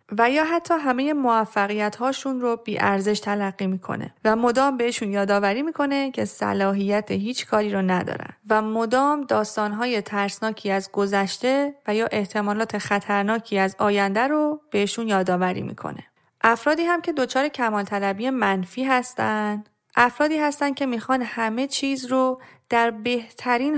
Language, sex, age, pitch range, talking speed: Persian, female, 30-49, 200-255 Hz, 130 wpm